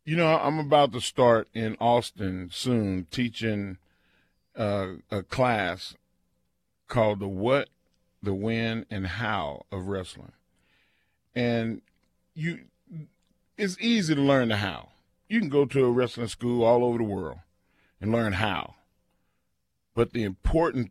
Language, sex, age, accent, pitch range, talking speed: English, male, 40-59, American, 100-140 Hz, 135 wpm